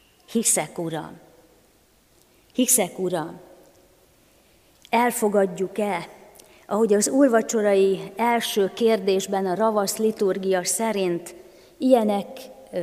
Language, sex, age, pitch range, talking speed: Hungarian, female, 30-49, 195-250 Hz, 70 wpm